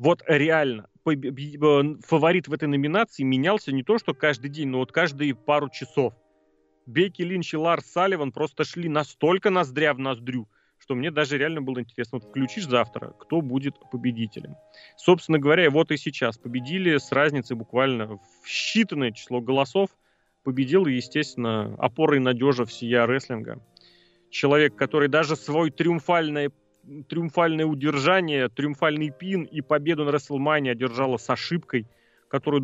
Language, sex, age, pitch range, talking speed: Russian, male, 30-49, 125-160 Hz, 140 wpm